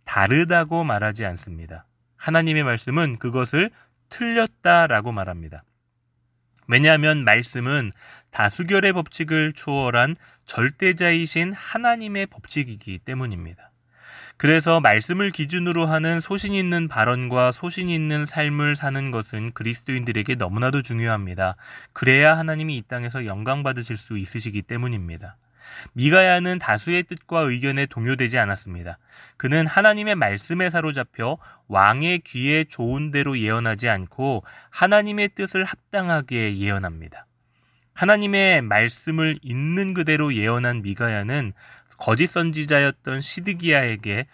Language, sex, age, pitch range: Korean, male, 20-39, 115-165 Hz